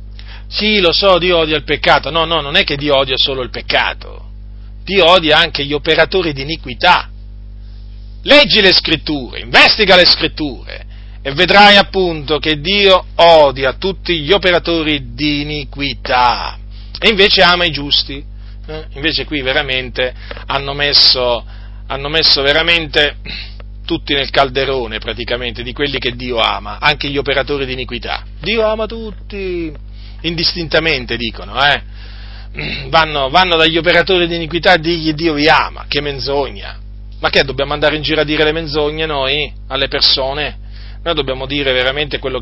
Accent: native